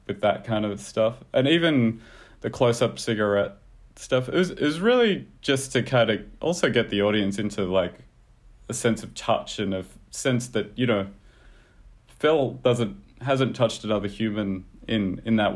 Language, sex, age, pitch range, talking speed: English, male, 30-49, 100-115 Hz, 165 wpm